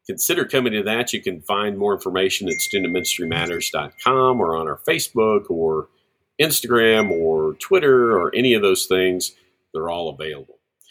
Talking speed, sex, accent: 150 wpm, male, American